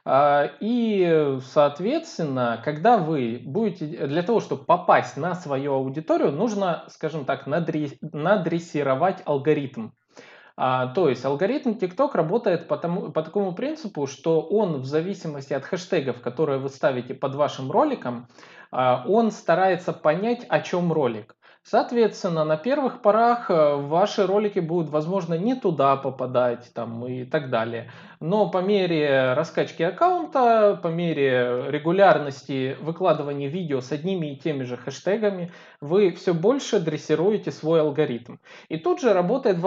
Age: 20-39